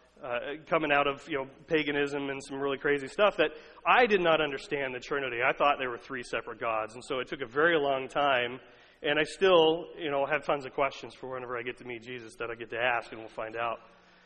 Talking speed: 250 wpm